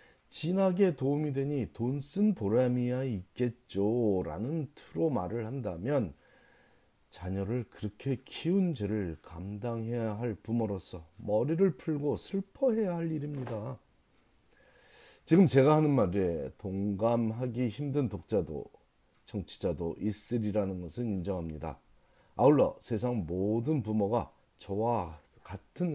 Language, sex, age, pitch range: Korean, male, 40-59, 95-135 Hz